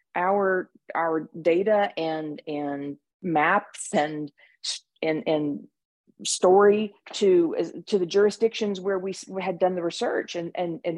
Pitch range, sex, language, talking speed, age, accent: 175-220 Hz, female, English, 125 wpm, 40-59, American